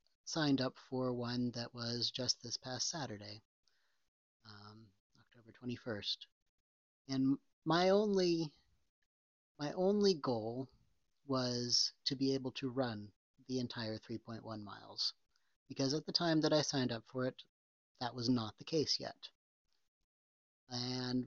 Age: 40-59